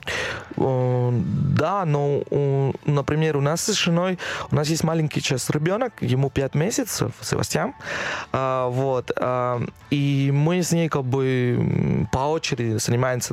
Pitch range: 125-150 Hz